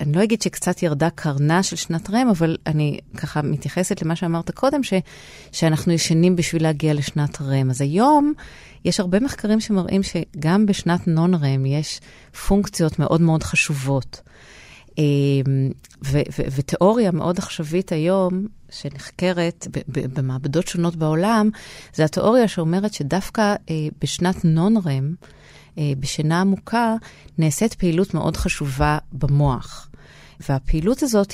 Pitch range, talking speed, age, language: 145-180 Hz, 125 wpm, 30-49, Hebrew